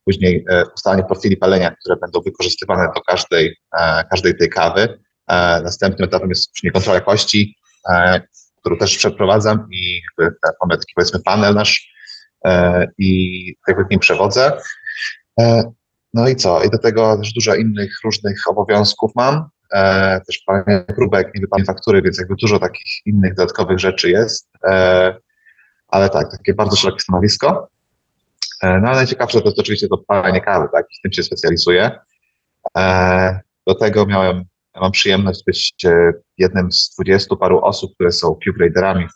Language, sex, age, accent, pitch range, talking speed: Polish, male, 30-49, native, 90-105 Hz, 150 wpm